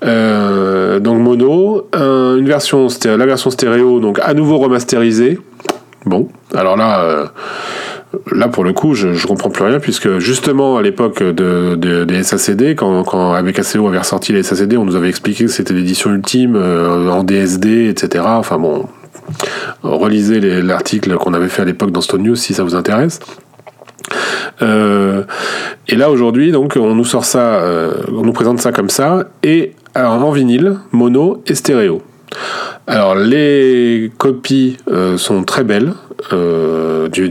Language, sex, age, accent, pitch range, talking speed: French, male, 30-49, French, 90-130 Hz, 160 wpm